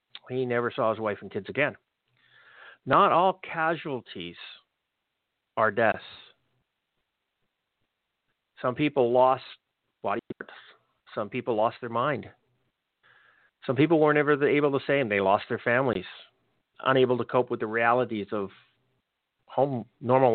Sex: male